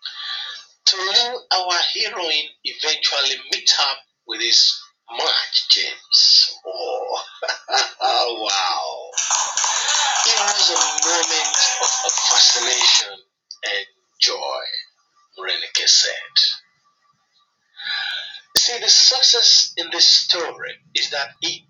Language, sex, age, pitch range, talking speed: English, male, 50-69, 315-395 Hz, 90 wpm